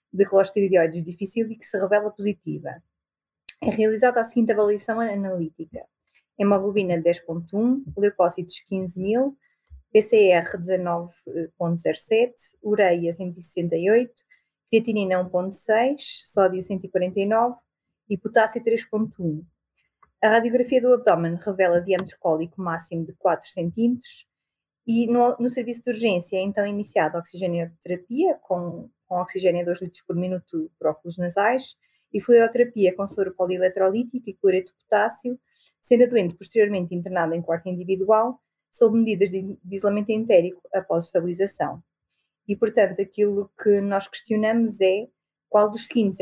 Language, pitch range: Portuguese, 180-225 Hz